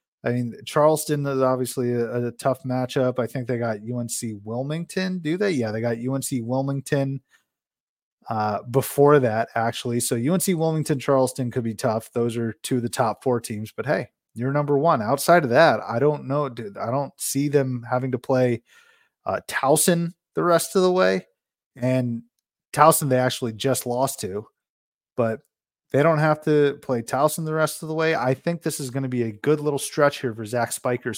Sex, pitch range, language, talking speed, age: male, 120-145 Hz, English, 190 wpm, 20-39